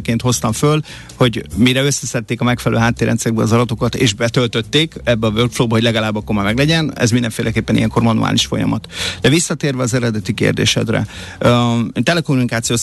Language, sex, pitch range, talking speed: Hungarian, male, 115-135 Hz, 140 wpm